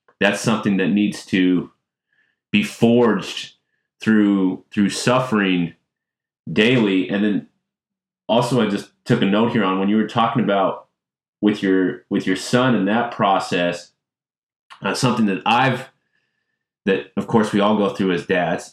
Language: English